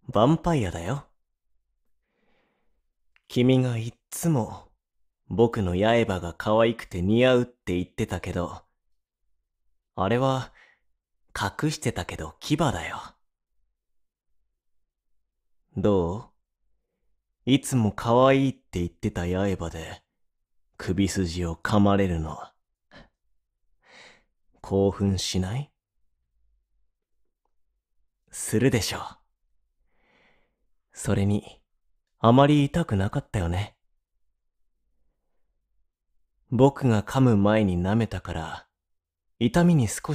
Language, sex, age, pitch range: Japanese, male, 30-49, 80-115 Hz